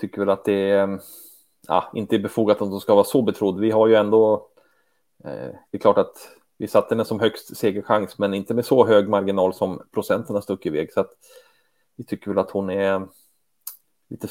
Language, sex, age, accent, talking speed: Swedish, male, 30-49, Norwegian, 205 wpm